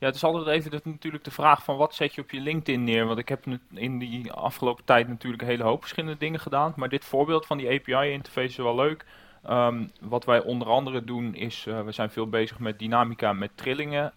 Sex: male